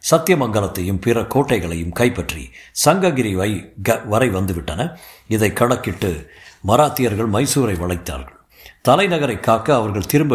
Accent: native